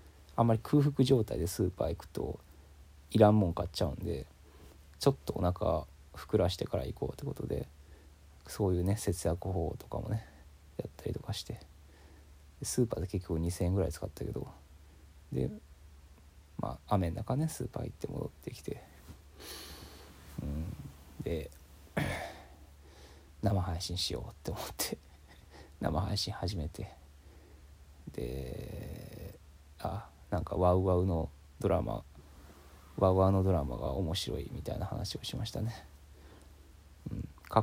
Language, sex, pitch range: Japanese, male, 75-95 Hz